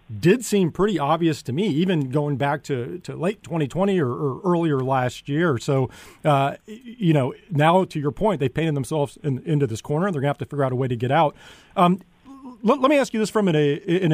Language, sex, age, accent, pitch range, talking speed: English, male, 40-59, American, 130-165 Hz, 230 wpm